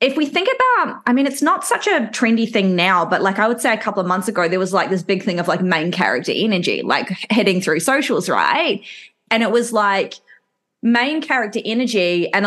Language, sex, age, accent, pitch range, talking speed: English, female, 20-39, Australian, 190-235 Hz, 225 wpm